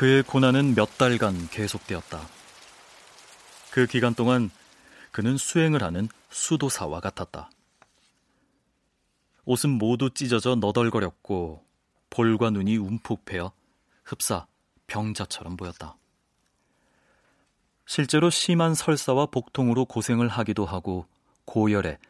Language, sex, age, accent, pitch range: Korean, male, 30-49, native, 100-130 Hz